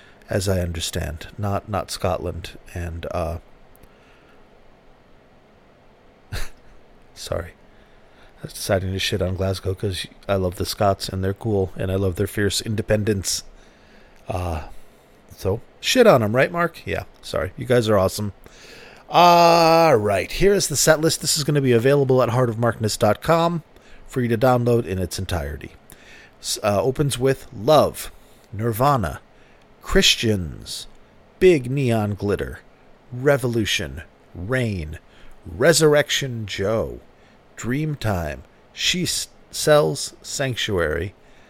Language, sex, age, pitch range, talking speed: English, male, 40-59, 95-145 Hz, 120 wpm